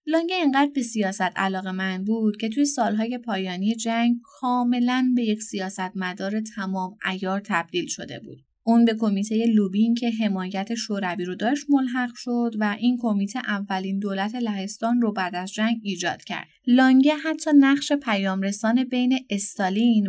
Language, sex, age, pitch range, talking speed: Persian, female, 20-39, 195-245 Hz, 150 wpm